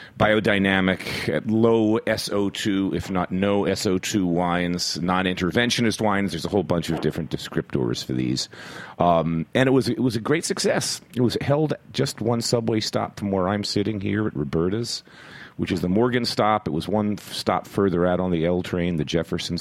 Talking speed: 185 wpm